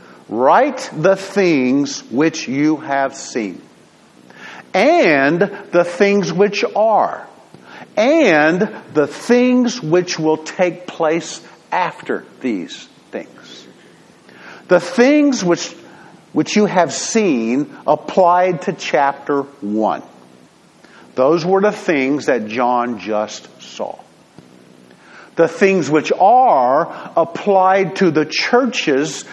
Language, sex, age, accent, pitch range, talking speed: English, male, 50-69, American, 125-190 Hz, 100 wpm